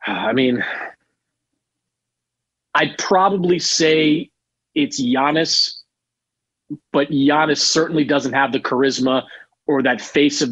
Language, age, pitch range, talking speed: English, 40-59, 150-210 Hz, 110 wpm